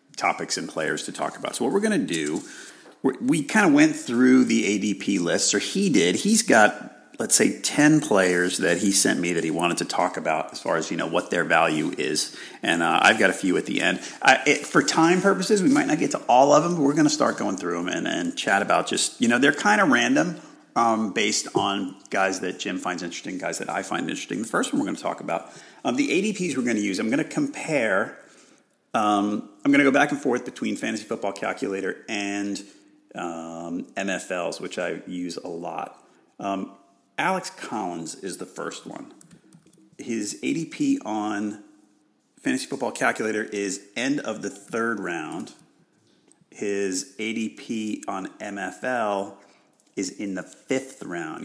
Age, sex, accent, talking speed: 40-59, male, American, 200 wpm